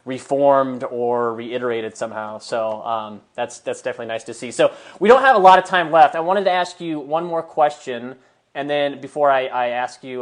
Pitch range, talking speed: 130-165 Hz, 210 wpm